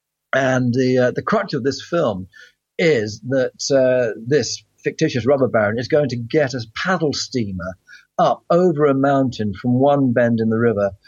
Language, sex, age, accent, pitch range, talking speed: English, male, 40-59, British, 110-140 Hz, 175 wpm